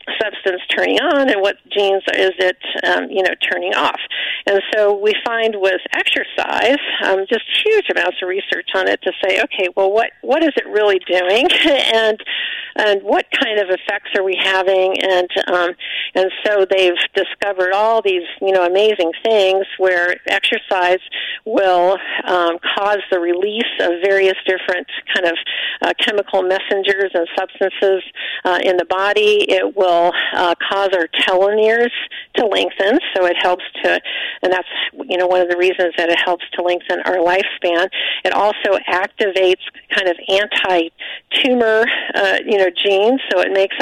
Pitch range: 180-205 Hz